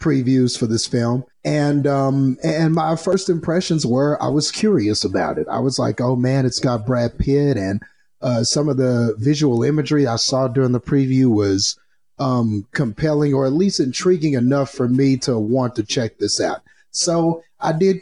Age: 30-49